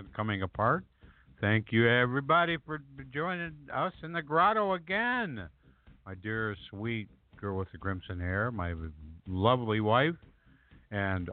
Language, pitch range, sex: English, 100-155 Hz, male